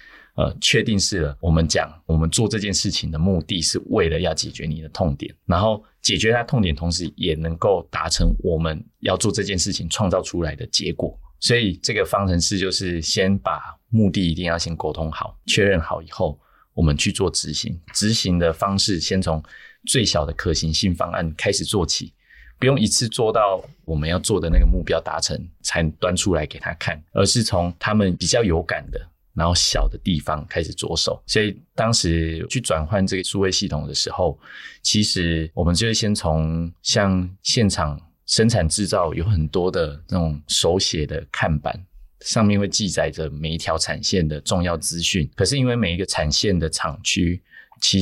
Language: Chinese